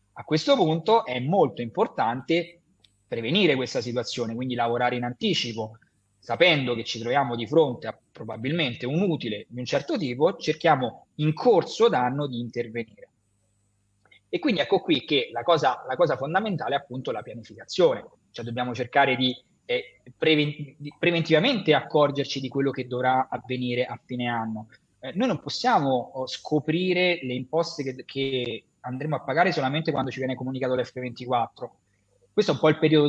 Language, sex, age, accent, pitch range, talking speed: Italian, male, 20-39, native, 120-155 Hz, 155 wpm